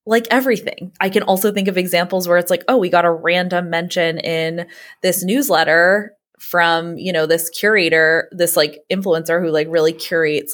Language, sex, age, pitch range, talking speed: English, female, 20-39, 165-220 Hz, 180 wpm